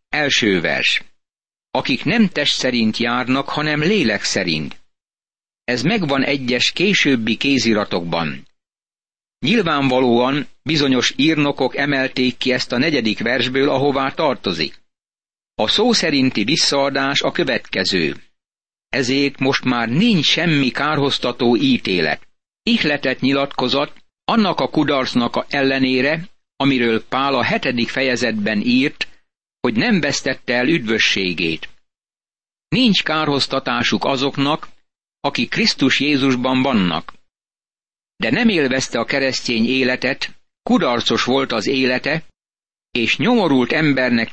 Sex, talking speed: male, 105 wpm